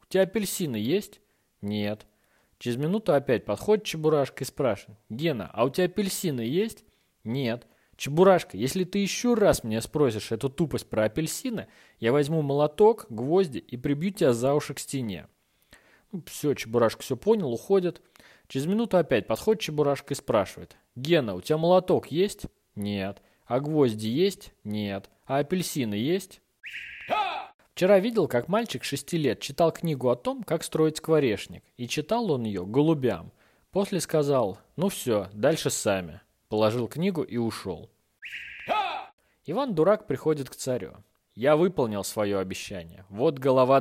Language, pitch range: Russian, 110-180 Hz